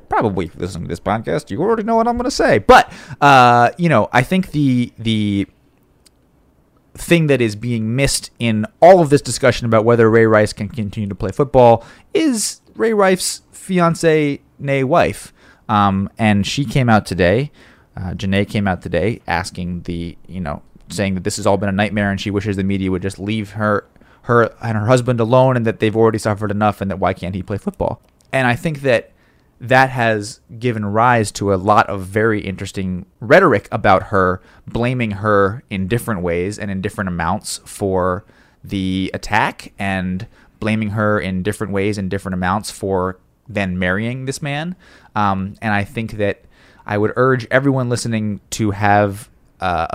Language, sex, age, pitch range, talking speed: English, male, 30-49, 95-120 Hz, 185 wpm